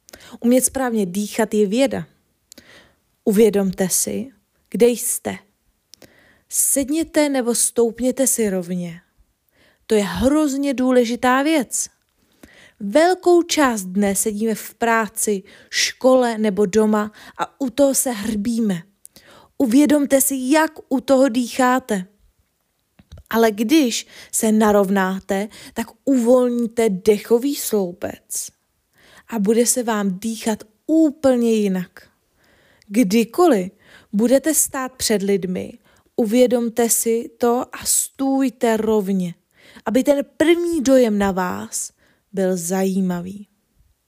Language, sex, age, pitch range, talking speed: Czech, female, 20-39, 210-265 Hz, 100 wpm